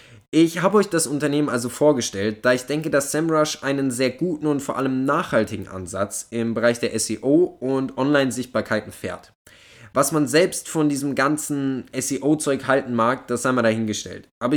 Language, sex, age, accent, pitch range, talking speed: German, male, 10-29, German, 110-155 Hz, 170 wpm